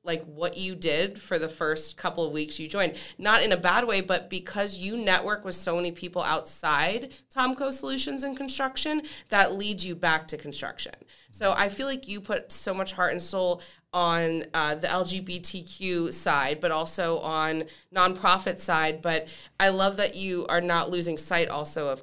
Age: 30-49